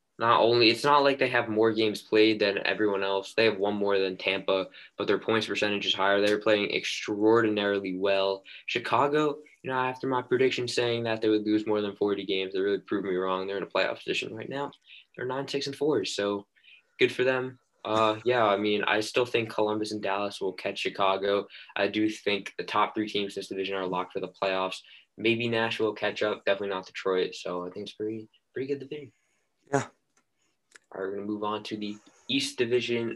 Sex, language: male, English